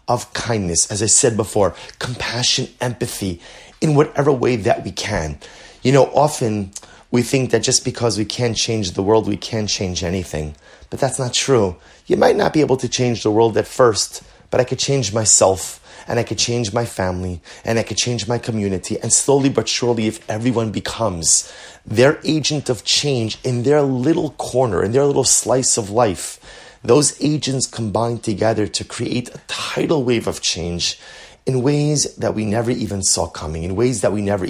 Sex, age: male, 30-49